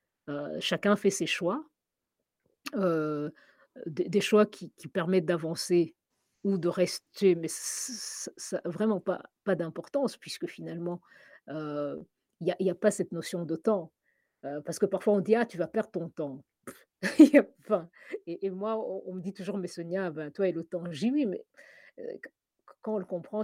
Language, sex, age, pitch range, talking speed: French, female, 50-69, 170-215 Hz, 185 wpm